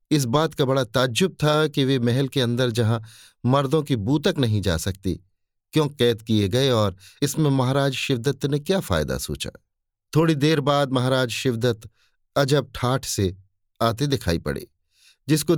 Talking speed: 160 wpm